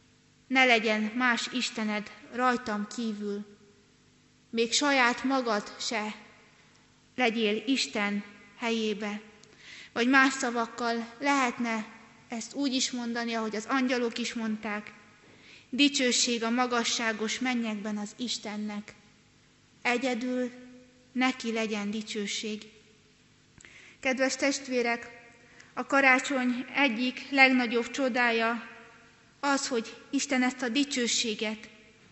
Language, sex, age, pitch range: Hungarian, female, 20-39, 225-255 Hz